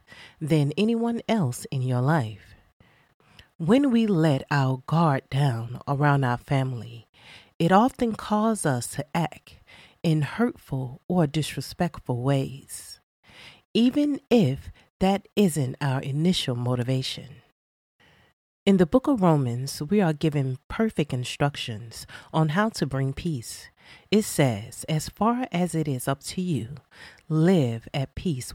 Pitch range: 130-185 Hz